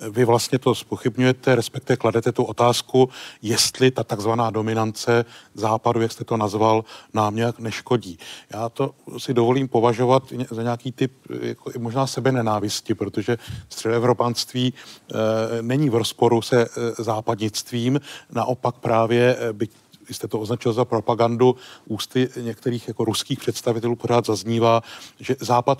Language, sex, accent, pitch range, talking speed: Czech, male, native, 115-125 Hz, 130 wpm